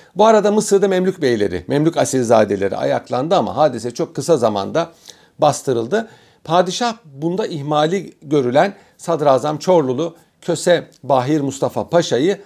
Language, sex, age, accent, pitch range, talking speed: Turkish, male, 50-69, native, 140-195 Hz, 115 wpm